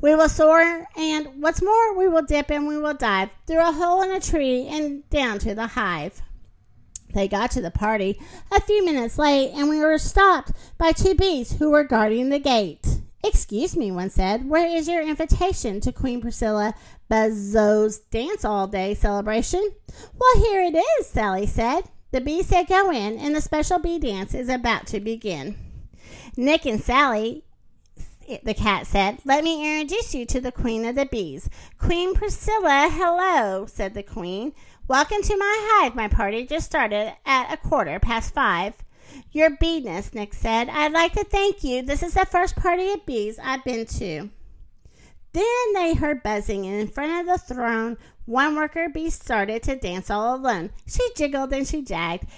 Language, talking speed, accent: English, 180 wpm, American